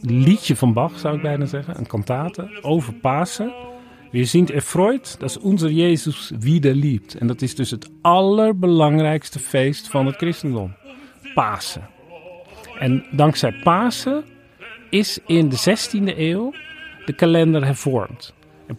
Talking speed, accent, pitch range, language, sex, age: 130 wpm, Dutch, 130-175 Hz, Dutch, male, 40-59